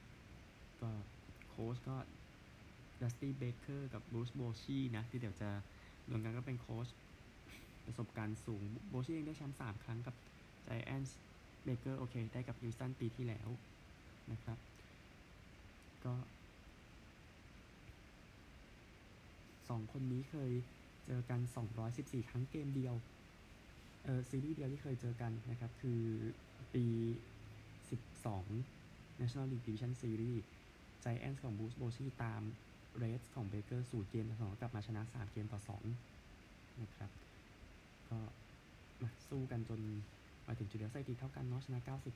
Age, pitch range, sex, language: 20-39, 105-125 Hz, male, Thai